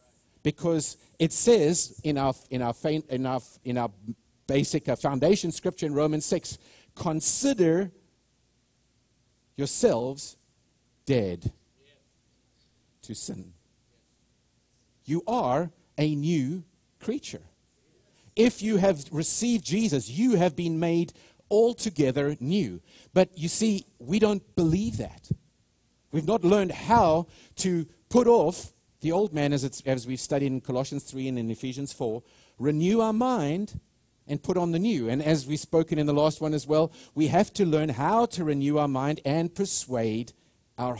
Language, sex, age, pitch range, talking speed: English, male, 50-69, 130-185 Hz, 145 wpm